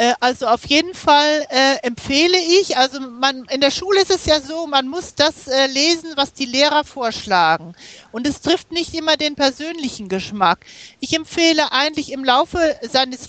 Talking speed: 175 wpm